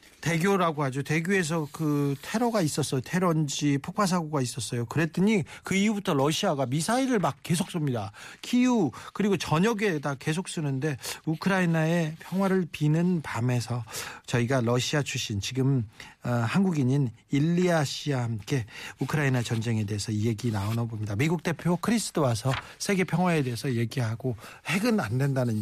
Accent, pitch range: native, 125-165 Hz